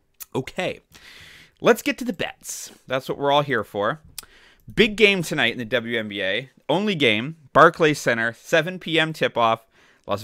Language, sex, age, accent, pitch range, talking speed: English, male, 30-49, American, 120-170 Hz, 150 wpm